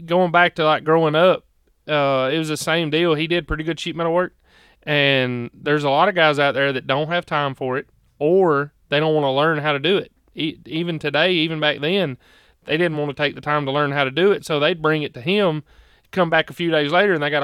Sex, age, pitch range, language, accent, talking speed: male, 30-49, 140-165 Hz, English, American, 260 wpm